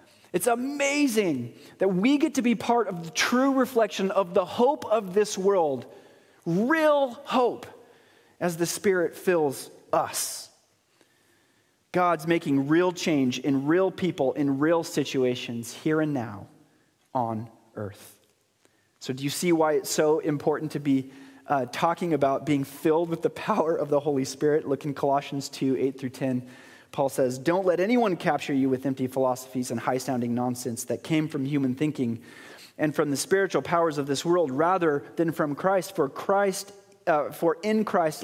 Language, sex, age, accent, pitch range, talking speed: English, male, 30-49, American, 140-200 Hz, 160 wpm